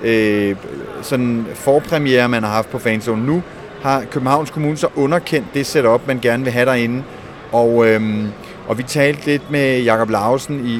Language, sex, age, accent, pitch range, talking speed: Danish, male, 30-49, native, 120-145 Hz, 170 wpm